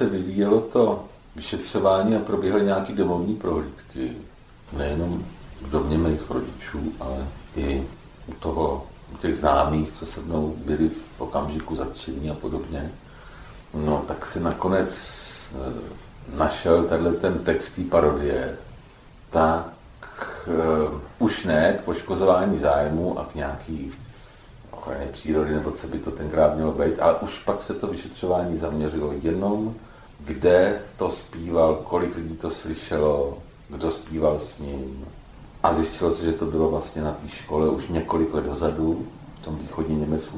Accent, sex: native, male